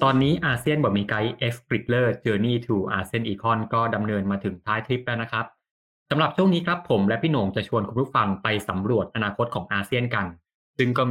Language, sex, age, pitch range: Thai, male, 20-39, 105-125 Hz